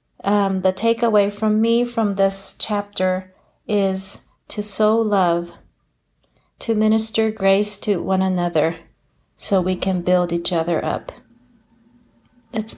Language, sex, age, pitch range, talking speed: English, female, 40-59, 180-215 Hz, 120 wpm